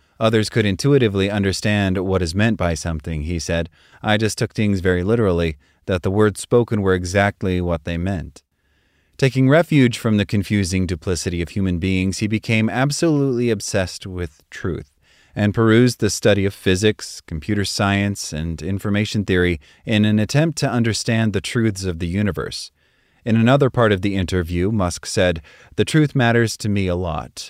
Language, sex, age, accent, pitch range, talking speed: English, male, 30-49, American, 90-115 Hz, 170 wpm